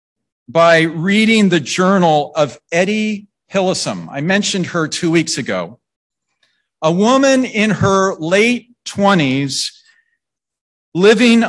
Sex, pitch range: male, 165-215 Hz